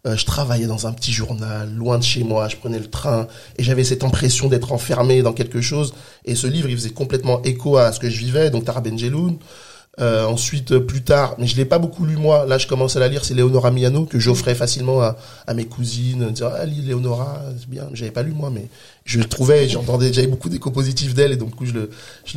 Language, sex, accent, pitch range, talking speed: French, male, French, 120-135 Hz, 255 wpm